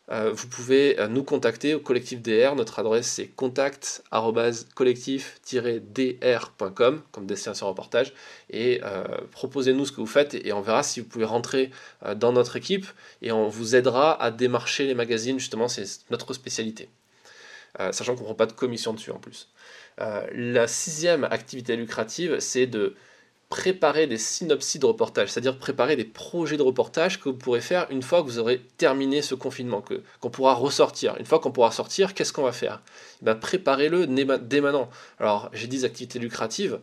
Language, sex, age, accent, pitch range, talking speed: French, male, 20-39, French, 115-145 Hz, 185 wpm